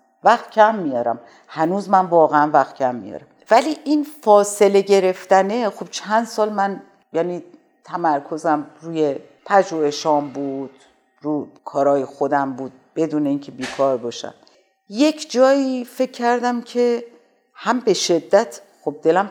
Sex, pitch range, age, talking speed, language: female, 150-205 Hz, 50-69, 125 wpm, Persian